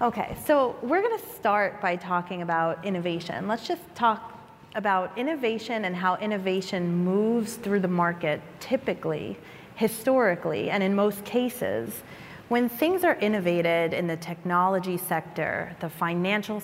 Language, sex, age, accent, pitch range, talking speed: English, female, 30-49, American, 170-210 Hz, 135 wpm